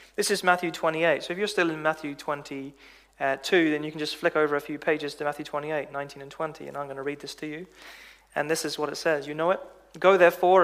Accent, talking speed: British, 260 wpm